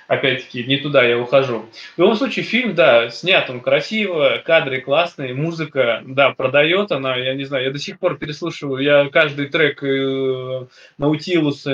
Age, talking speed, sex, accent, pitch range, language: 20-39, 160 wpm, male, native, 135-170 Hz, Russian